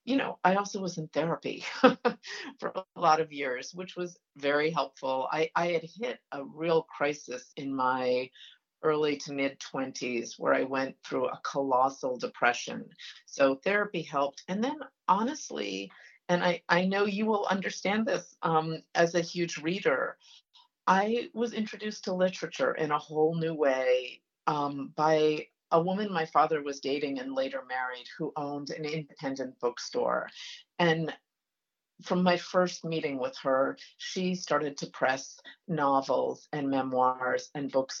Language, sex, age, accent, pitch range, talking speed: English, female, 50-69, American, 135-180 Hz, 150 wpm